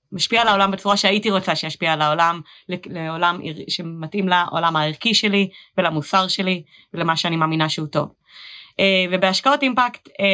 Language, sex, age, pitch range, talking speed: Hebrew, female, 20-39, 180-225 Hz, 135 wpm